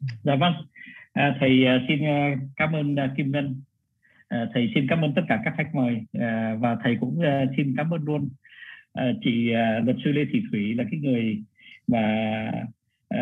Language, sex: Vietnamese, male